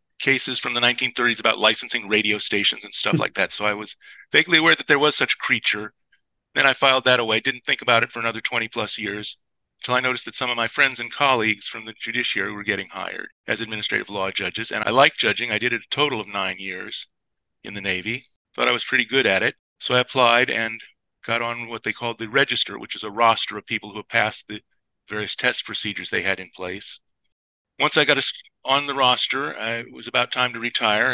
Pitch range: 105-125 Hz